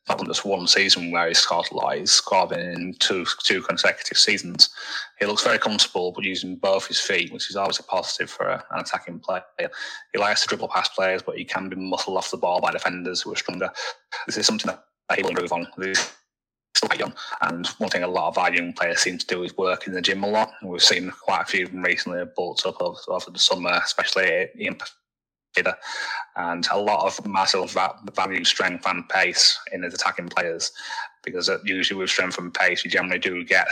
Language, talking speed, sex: English, 215 wpm, male